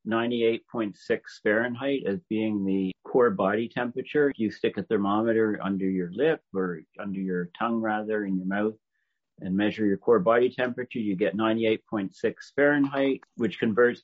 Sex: male